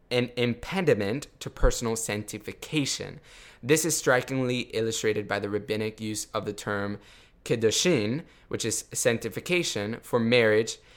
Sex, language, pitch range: male, English, 100-115 Hz